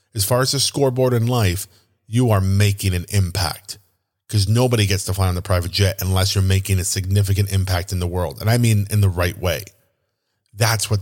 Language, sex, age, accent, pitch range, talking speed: English, male, 30-49, American, 95-115 Hz, 210 wpm